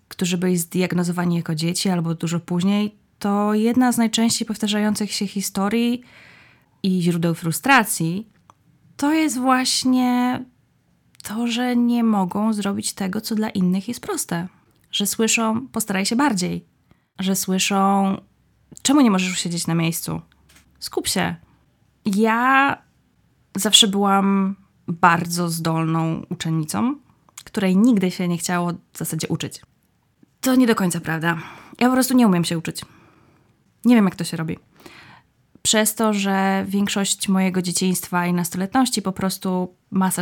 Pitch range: 180-230 Hz